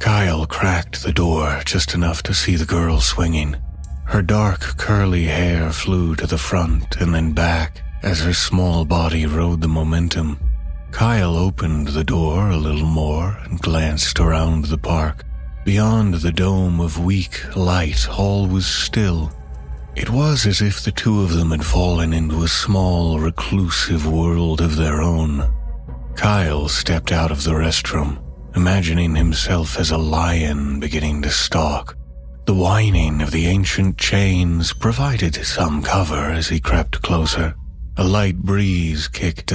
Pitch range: 75-90 Hz